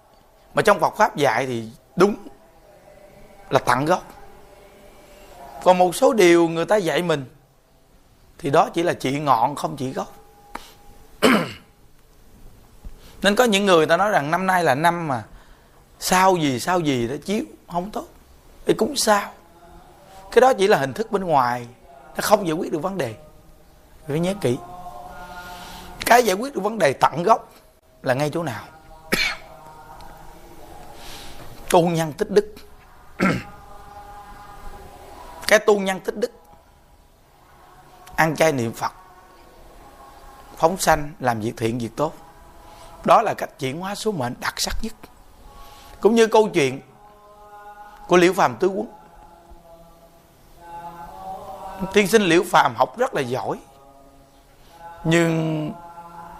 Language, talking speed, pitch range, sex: Vietnamese, 135 wpm, 155-200 Hz, male